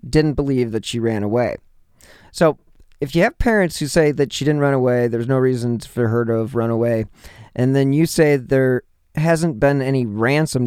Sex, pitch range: male, 115-150 Hz